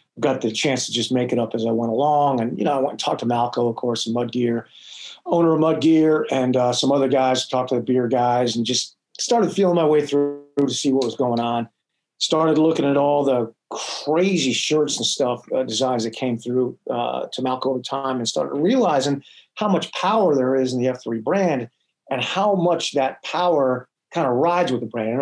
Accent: American